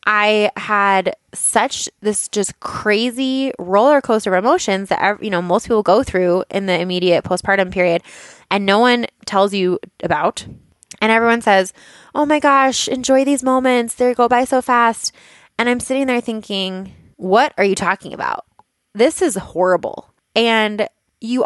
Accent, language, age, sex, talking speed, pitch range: American, English, 20-39, female, 160 wpm, 180-230 Hz